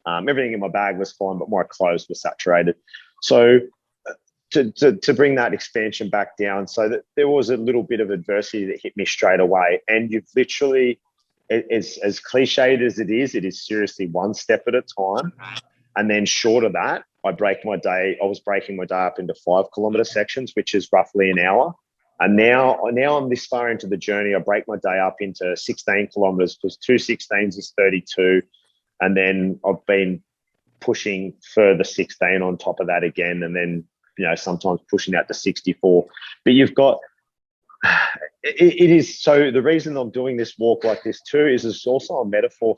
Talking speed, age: 195 wpm, 30-49